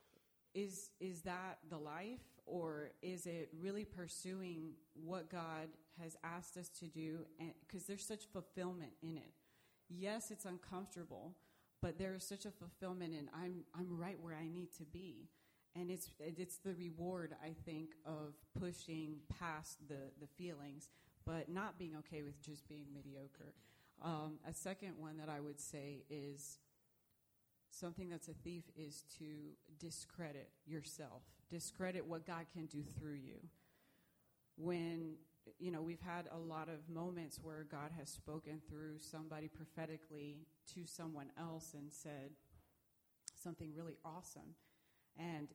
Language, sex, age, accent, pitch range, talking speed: English, female, 30-49, American, 155-175 Hz, 145 wpm